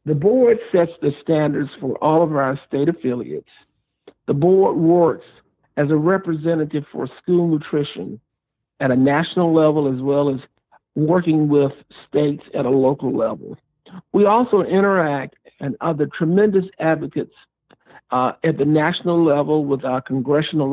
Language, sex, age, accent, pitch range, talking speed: English, male, 60-79, American, 140-170 Hz, 140 wpm